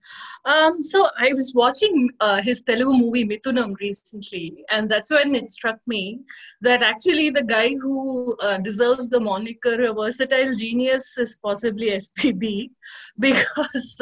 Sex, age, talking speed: female, 30-49, 140 wpm